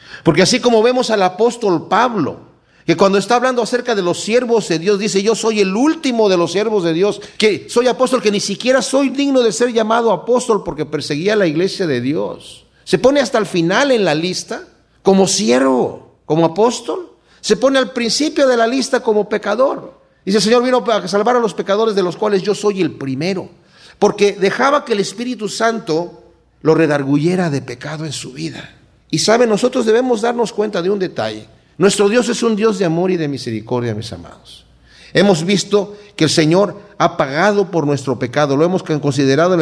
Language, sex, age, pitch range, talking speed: Spanish, male, 50-69, 165-225 Hz, 195 wpm